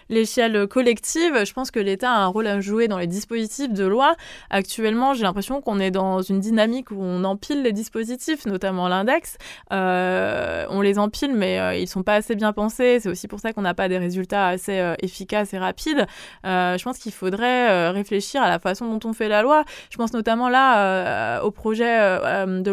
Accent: French